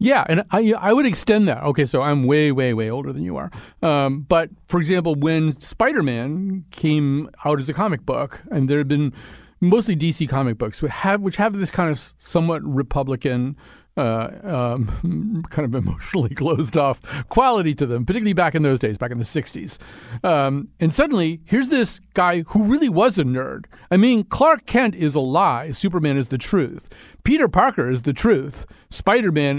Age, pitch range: 40-59, 130-185 Hz